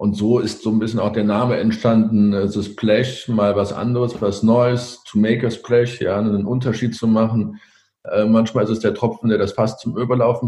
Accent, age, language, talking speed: German, 50-69, German, 220 wpm